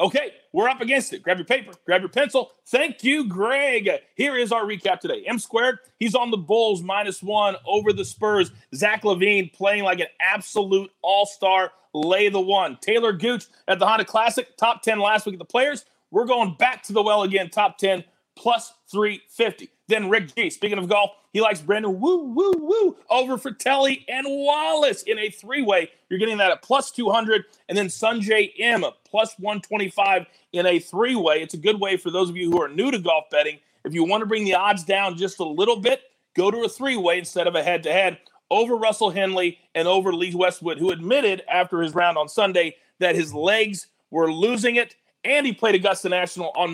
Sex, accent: male, American